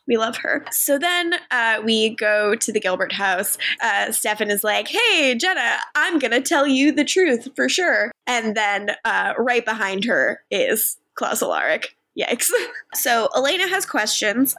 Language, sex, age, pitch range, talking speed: English, female, 10-29, 195-275 Hz, 170 wpm